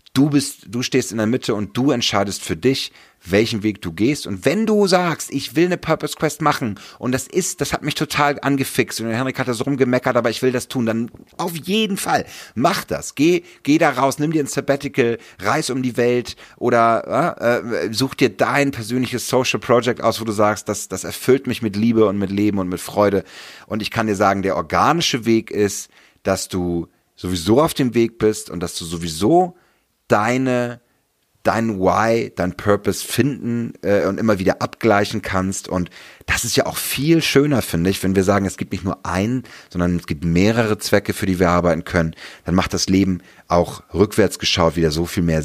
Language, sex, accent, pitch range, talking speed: English, male, German, 90-130 Hz, 210 wpm